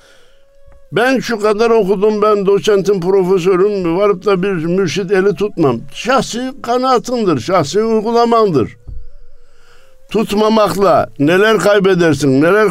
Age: 60-79